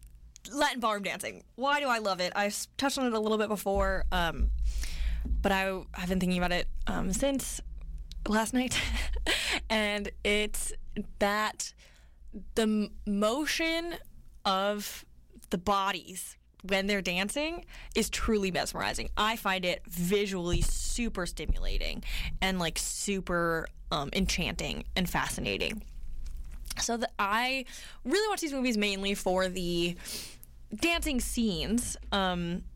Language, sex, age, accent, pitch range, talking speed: English, female, 10-29, American, 175-220 Hz, 120 wpm